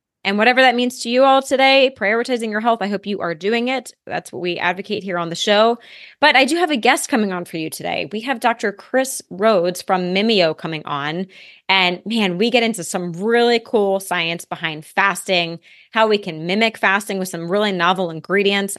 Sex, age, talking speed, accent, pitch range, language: female, 20-39, 210 wpm, American, 175-225 Hz, English